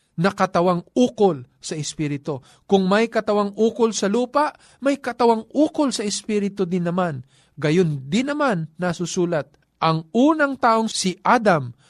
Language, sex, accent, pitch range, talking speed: Filipino, male, native, 160-230 Hz, 130 wpm